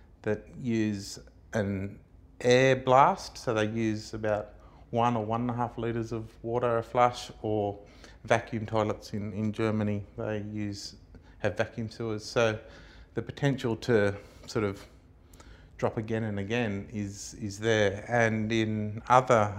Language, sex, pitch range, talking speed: English, male, 100-115 Hz, 145 wpm